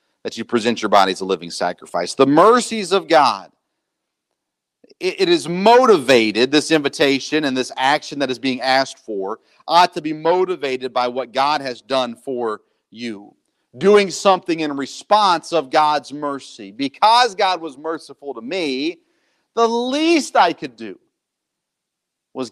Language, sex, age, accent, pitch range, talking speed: English, male, 40-59, American, 125-170 Hz, 150 wpm